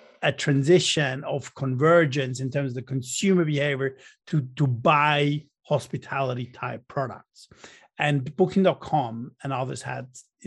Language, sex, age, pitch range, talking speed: English, male, 50-69, 130-160 Hz, 125 wpm